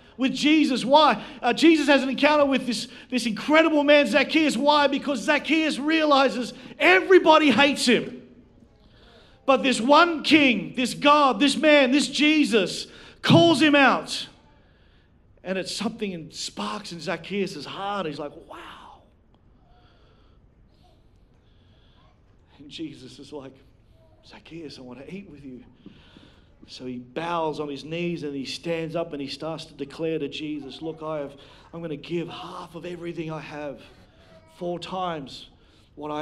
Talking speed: 145 wpm